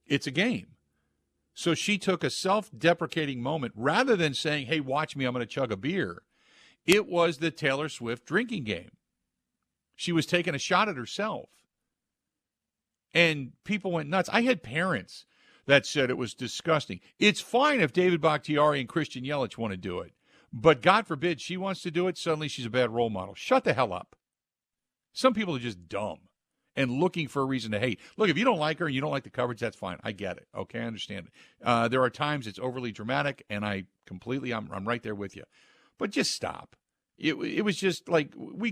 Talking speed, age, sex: 210 wpm, 50-69, male